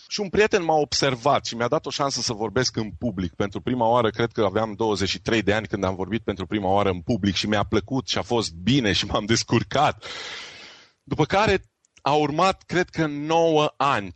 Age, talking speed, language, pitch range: 30-49, 210 wpm, Romanian, 115-145 Hz